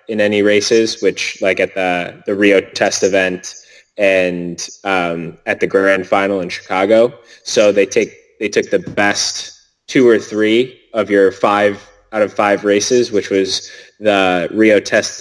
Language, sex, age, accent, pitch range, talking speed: Danish, male, 20-39, American, 95-100 Hz, 160 wpm